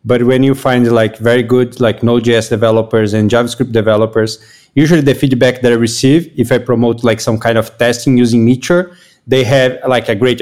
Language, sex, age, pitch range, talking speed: English, male, 20-39, 120-140 Hz, 195 wpm